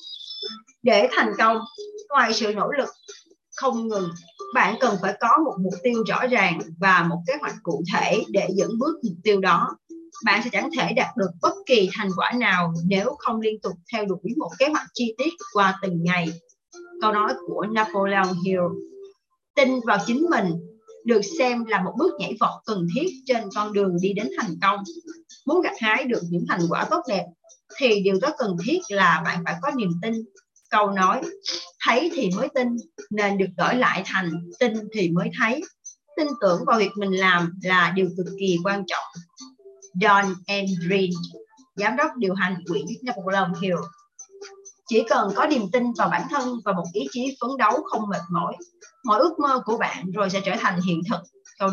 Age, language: 20-39, Vietnamese